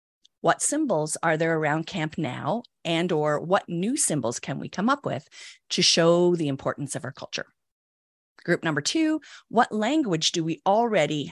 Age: 30-49